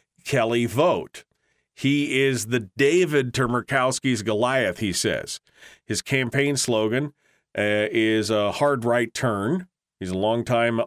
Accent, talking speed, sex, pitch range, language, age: American, 125 wpm, male, 115-145 Hz, English, 40-59